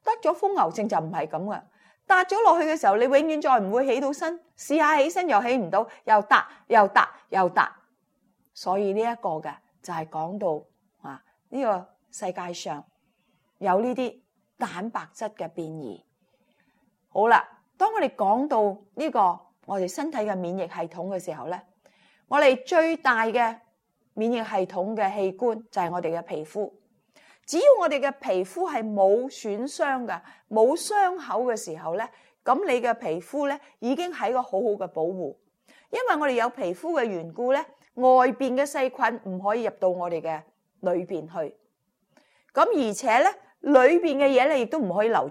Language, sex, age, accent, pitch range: Chinese, female, 30-49, native, 190-290 Hz